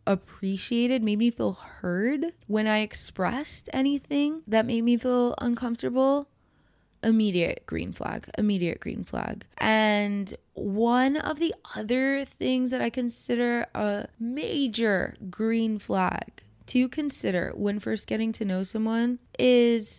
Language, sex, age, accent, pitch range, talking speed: English, female, 20-39, American, 200-250 Hz, 125 wpm